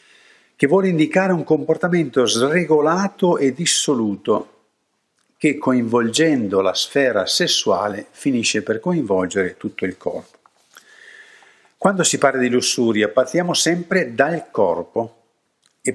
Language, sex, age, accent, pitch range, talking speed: Italian, male, 50-69, native, 110-175 Hz, 110 wpm